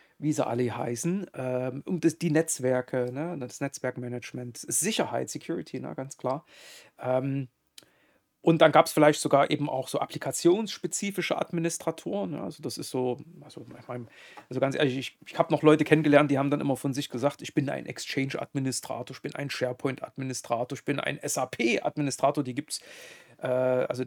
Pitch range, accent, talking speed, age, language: 130-155 Hz, German, 150 wpm, 40-59, German